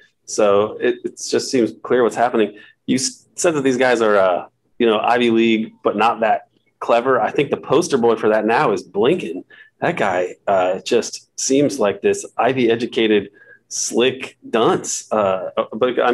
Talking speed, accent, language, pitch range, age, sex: 170 wpm, American, English, 110-140 Hz, 30-49, male